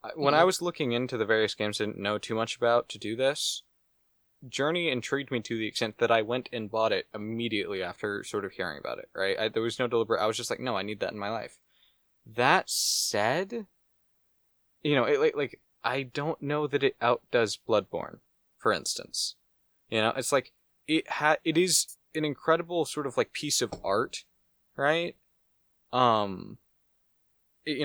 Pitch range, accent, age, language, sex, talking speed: 115-150 Hz, American, 20-39, English, male, 190 wpm